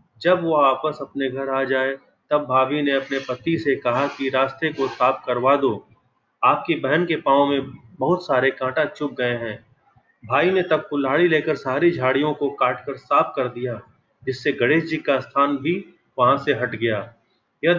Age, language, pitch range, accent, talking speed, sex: 30-49, Hindi, 130-145 Hz, native, 185 wpm, male